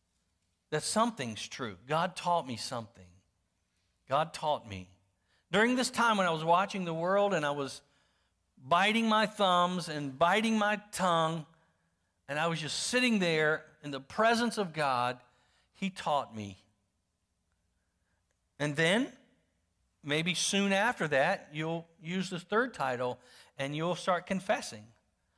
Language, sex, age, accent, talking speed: English, male, 50-69, American, 135 wpm